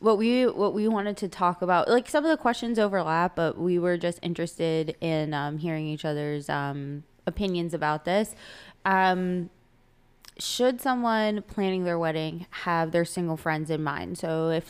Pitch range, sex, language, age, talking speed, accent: 160-185 Hz, female, English, 20-39, 170 wpm, American